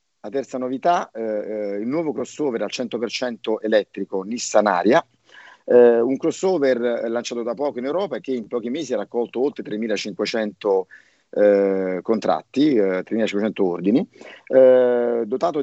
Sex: male